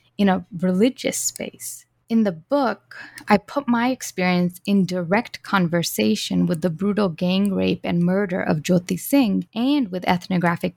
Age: 20-39